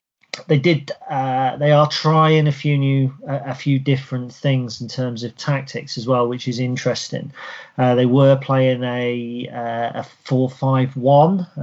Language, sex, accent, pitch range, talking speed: English, male, British, 120-135 Hz, 160 wpm